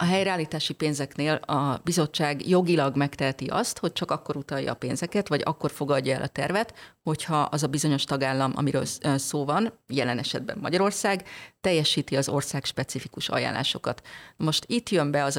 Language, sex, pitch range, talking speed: Hungarian, female, 140-175 Hz, 160 wpm